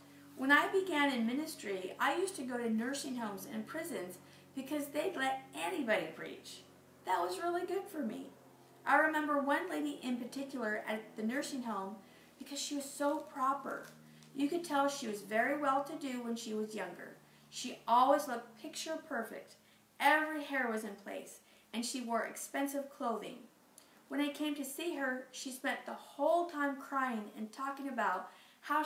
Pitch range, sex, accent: 220-290 Hz, female, American